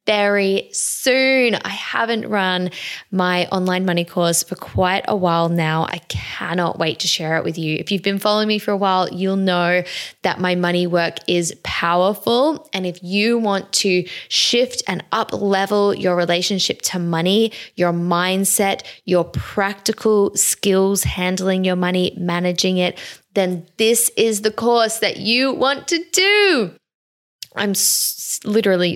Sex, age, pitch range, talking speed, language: female, 10-29, 175-215 Hz, 150 wpm, English